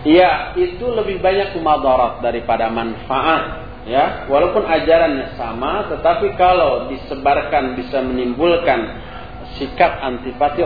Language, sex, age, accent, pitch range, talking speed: Indonesian, male, 40-59, native, 125-170 Hz, 100 wpm